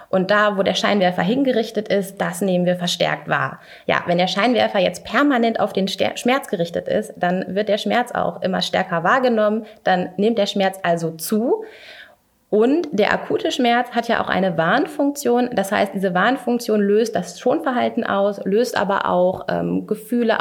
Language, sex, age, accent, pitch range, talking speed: German, female, 30-49, German, 195-230 Hz, 175 wpm